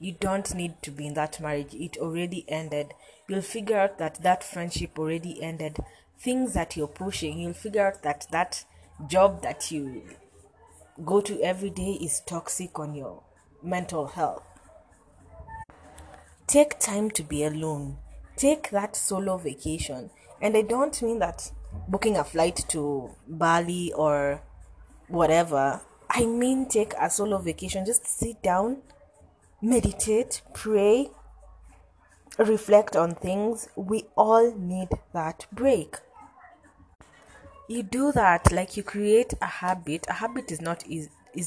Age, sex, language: 30-49, female, English